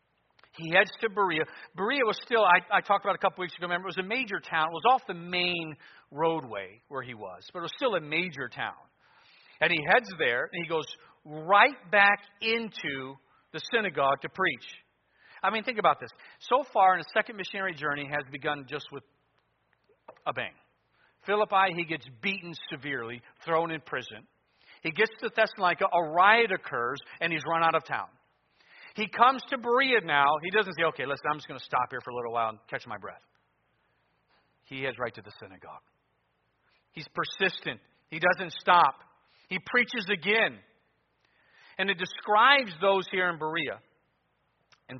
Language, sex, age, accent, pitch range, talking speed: English, male, 50-69, American, 145-195 Hz, 180 wpm